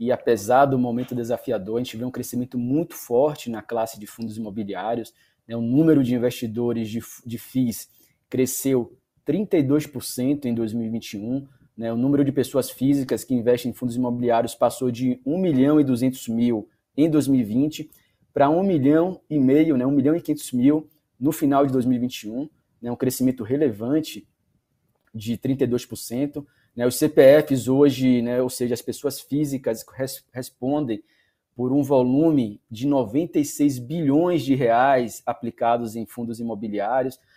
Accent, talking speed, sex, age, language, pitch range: Brazilian, 145 wpm, male, 20-39, Portuguese, 120-140 Hz